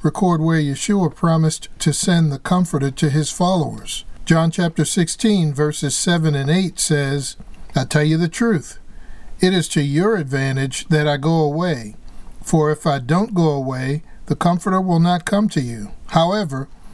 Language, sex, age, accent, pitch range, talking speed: English, male, 50-69, American, 150-185 Hz, 165 wpm